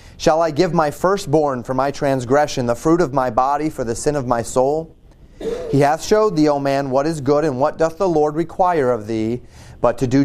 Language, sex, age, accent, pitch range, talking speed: English, male, 30-49, American, 130-165 Hz, 230 wpm